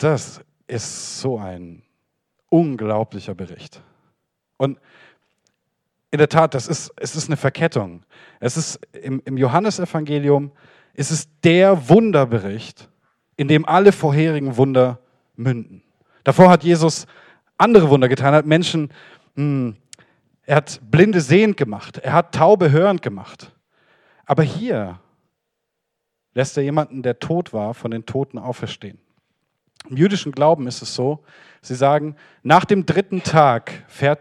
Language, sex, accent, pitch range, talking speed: German, male, German, 125-160 Hz, 135 wpm